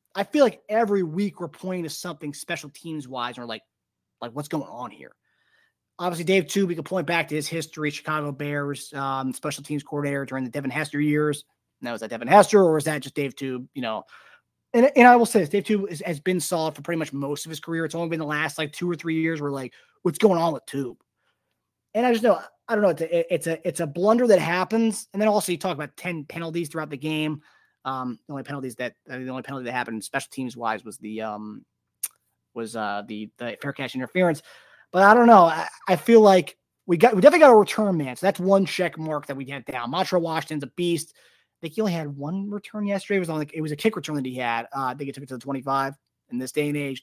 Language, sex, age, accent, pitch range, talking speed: English, male, 20-39, American, 130-185 Hz, 260 wpm